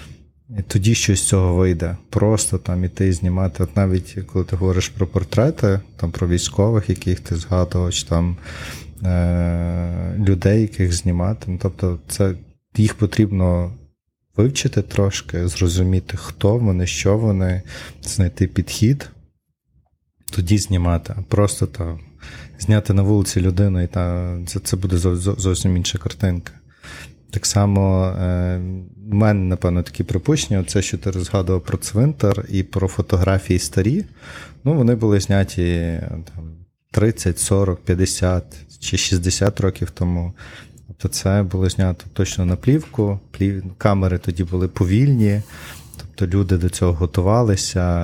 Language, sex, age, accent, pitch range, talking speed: Ukrainian, male, 30-49, native, 90-100 Hz, 130 wpm